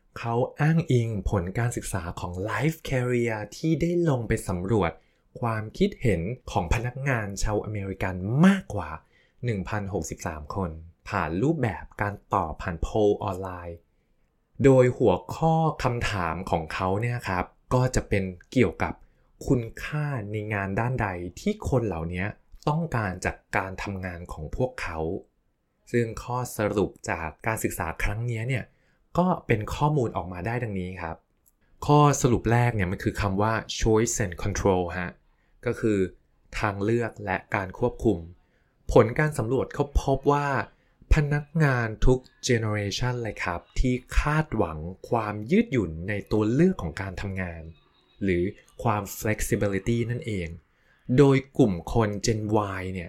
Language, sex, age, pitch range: Thai, male, 20-39, 95-125 Hz